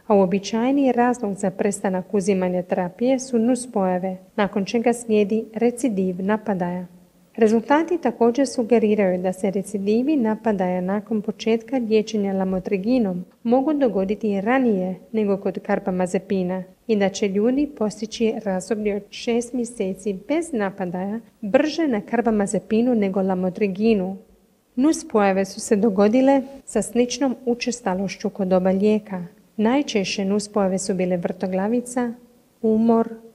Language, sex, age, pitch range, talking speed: Croatian, female, 40-59, 195-235 Hz, 115 wpm